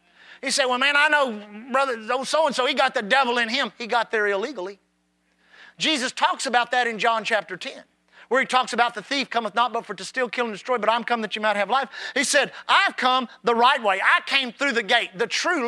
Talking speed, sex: 240 wpm, male